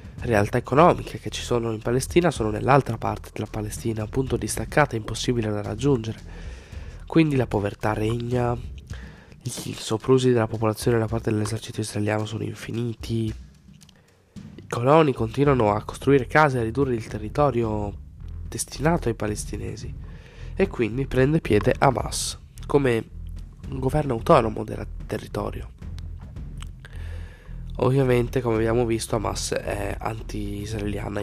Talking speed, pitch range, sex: 125 wpm, 100-120 Hz, male